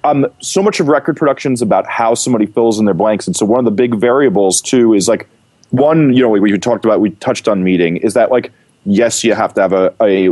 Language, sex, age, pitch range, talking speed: English, male, 30-49, 100-120 Hz, 260 wpm